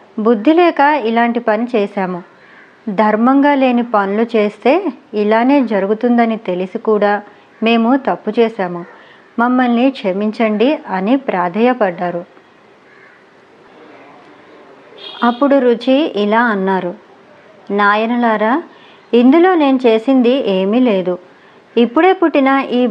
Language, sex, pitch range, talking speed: Telugu, male, 205-265 Hz, 85 wpm